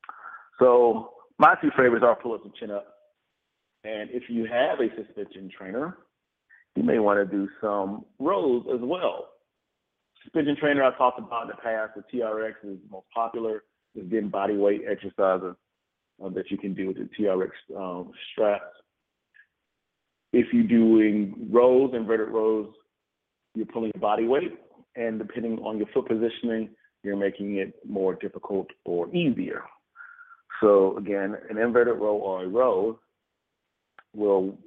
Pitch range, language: 100-120 Hz, English